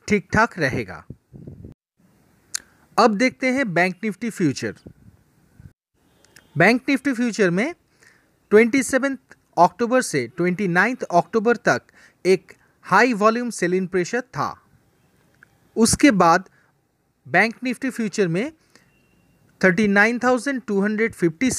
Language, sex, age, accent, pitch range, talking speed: Hindi, male, 30-49, native, 175-245 Hz, 90 wpm